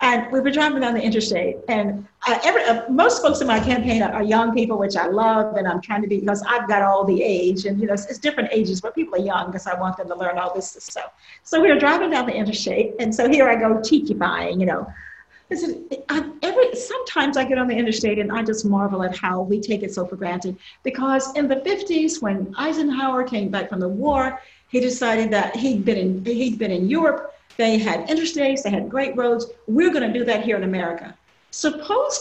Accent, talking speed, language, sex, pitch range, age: American, 235 wpm, English, female, 200-270 Hz, 50-69